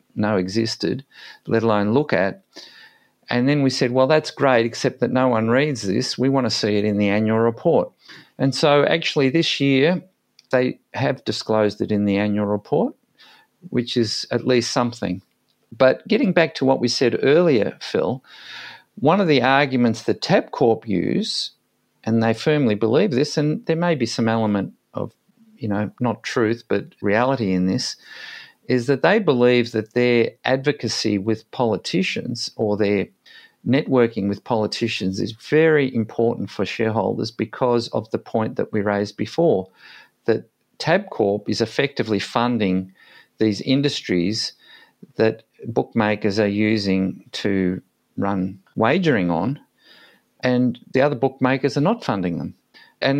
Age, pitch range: 50-69, 105-135 Hz